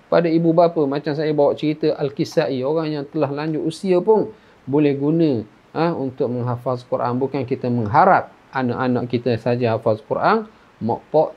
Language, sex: Indonesian, male